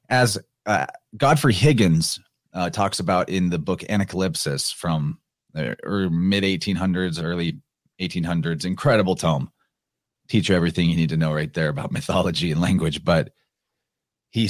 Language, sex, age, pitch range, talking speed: English, male, 30-49, 85-110 Hz, 135 wpm